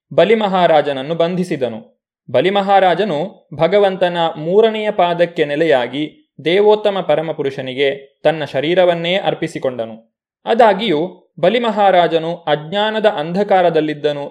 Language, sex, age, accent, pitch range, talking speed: Kannada, male, 30-49, native, 150-190 Hz, 65 wpm